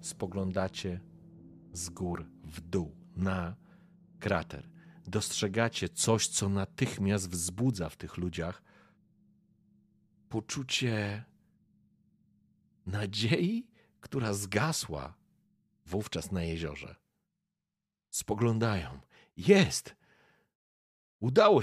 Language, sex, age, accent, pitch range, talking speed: Polish, male, 50-69, native, 75-110 Hz, 70 wpm